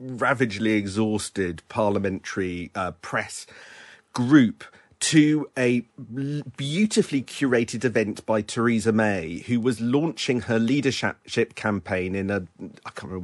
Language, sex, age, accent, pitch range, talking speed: English, male, 40-59, British, 100-125 Hz, 115 wpm